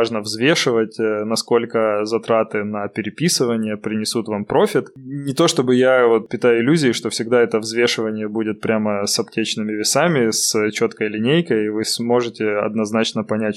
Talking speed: 145 wpm